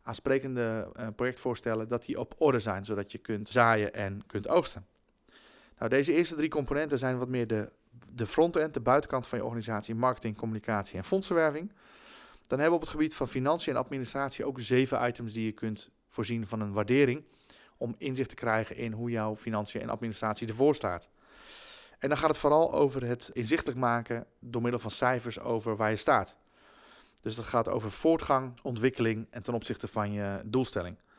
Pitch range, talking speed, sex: 110-135 Hz, 180 wpm, male